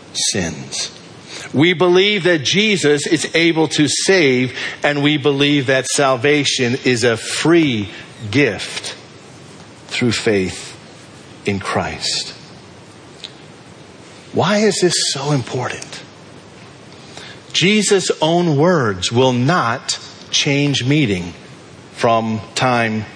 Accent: American